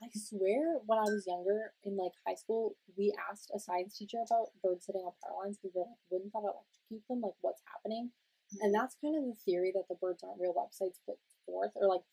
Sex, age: female, 20-39